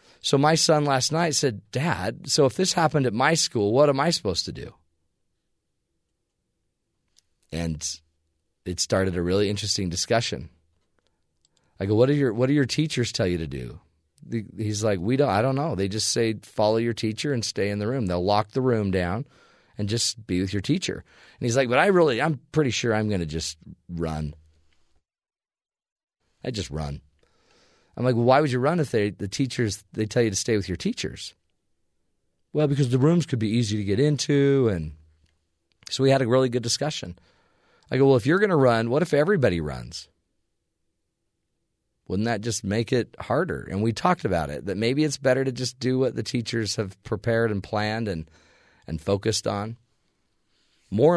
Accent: American